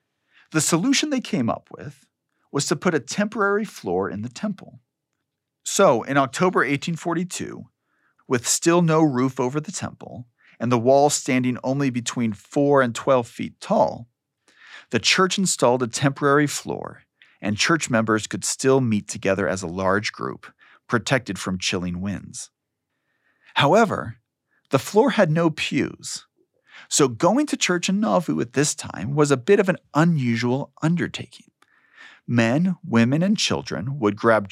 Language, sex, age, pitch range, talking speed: English, male, 40-59, 110-155 Hz, 150 wpm